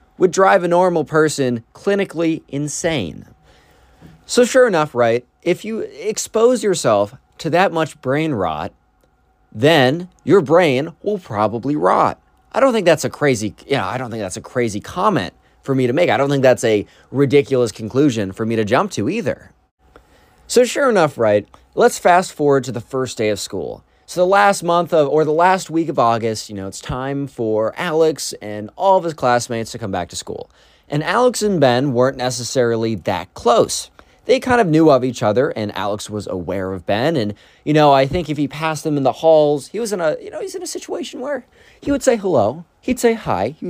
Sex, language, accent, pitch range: male, English, American, 115-175 Hz